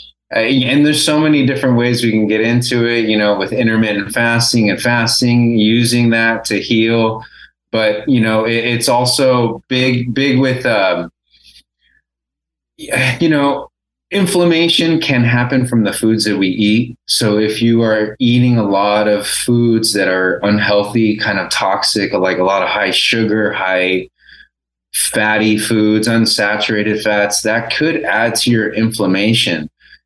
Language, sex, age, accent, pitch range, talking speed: English, male, 30-49, American, 105-120 Hz, 150 wpm